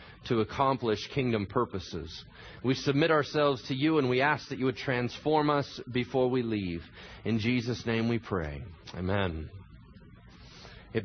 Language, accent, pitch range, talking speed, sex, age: English, American, 135-220 Hz, 145 wpm, male, 30-49